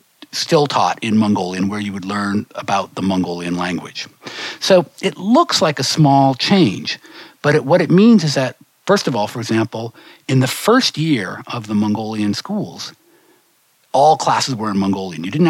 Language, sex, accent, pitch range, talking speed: English, male, American, 100-145 Hz, 175 wpm